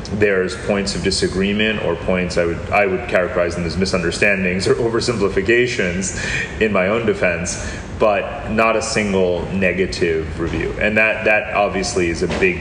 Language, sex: English, male